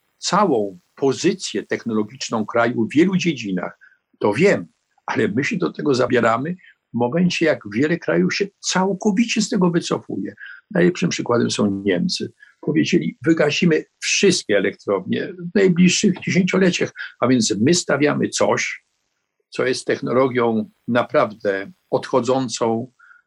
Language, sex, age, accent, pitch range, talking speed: Polish, male, 50-69, native, 115-175 Hz, 120 wpm